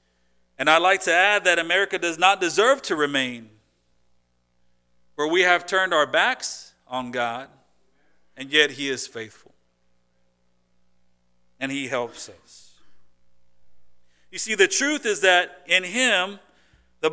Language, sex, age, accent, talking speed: English, male, 50-69, American, 135 wpm